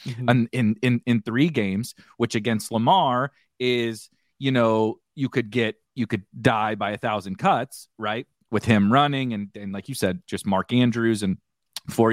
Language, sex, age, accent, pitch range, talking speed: English, male, 30-49, American, 100-130 Hz, 180 wpm